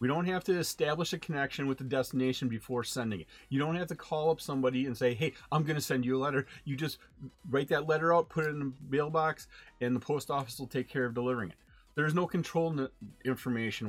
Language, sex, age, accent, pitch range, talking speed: English, male, 40-59, American, 125-160 Hz, 240 wpm